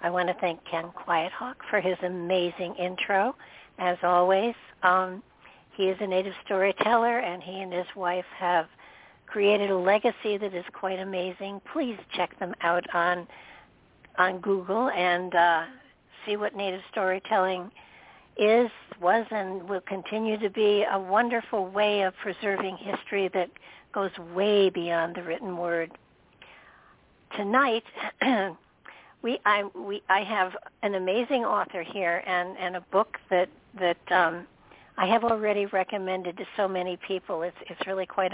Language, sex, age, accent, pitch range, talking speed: English, female, 60-79, American, 180-205 Hz, 145 wpm